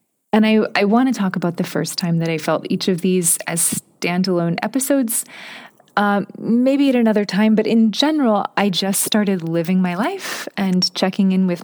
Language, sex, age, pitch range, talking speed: English, female, 20-39, 175-220 Hz, 190 wpm